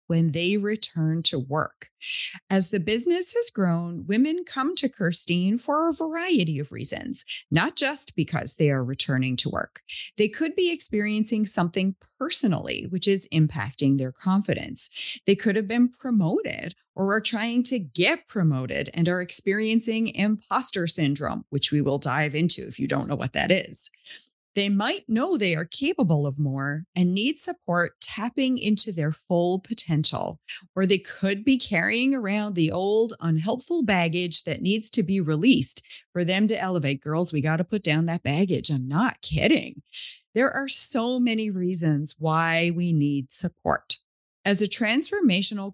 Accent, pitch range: American, 165-235 Hz